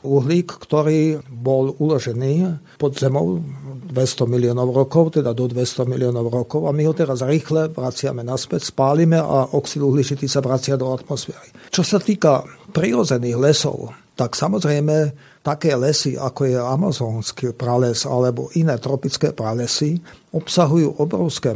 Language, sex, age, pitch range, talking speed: Slovak, male, 50-69, 130-155 Hz, 135 wpm